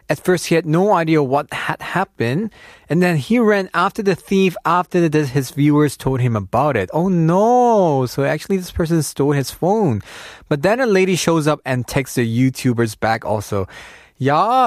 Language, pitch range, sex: Korean, 110-165 Hz, male